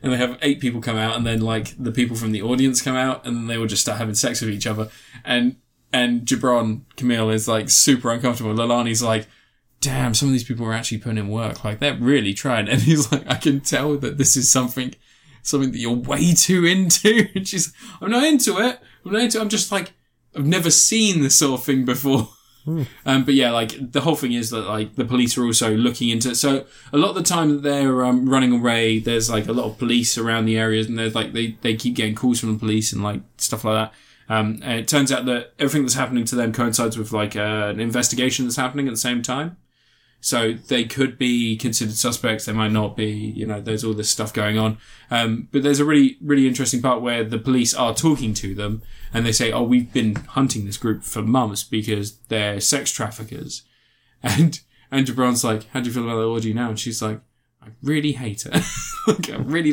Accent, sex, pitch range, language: British, male, 115-145 Hz, English